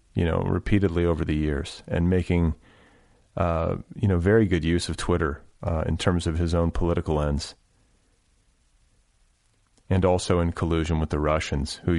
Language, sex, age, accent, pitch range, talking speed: English, male, 30-49, American, 80-105 Hz, 160 wpm